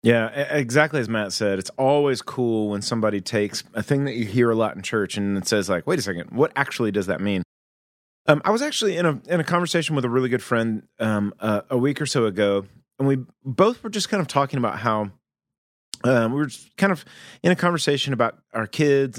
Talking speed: 235 wpm